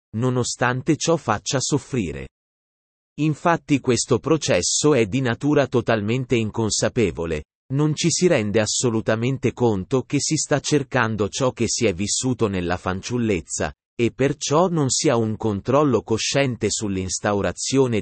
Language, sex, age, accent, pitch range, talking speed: Italian, male, 30-49, native, 105-140 Hz, 125 wpm